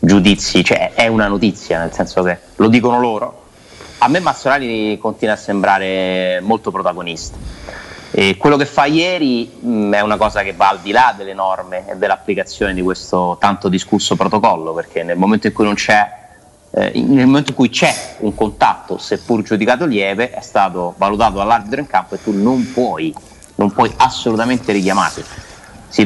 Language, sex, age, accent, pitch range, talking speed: Italian, male, 30-49, native, 95-110 Hz, 175 wpm